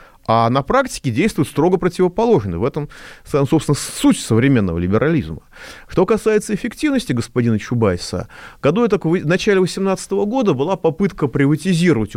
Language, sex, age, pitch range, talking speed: Russian, male, 30-49, 105-175 Hz, 130 wpm